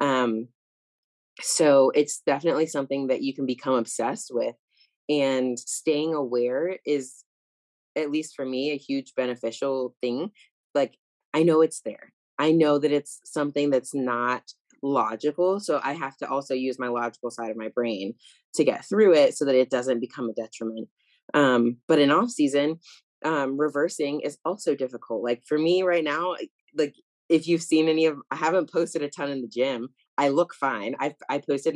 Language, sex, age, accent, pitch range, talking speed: English, female, 20-39, American, 125-150 Hz, 180 wpm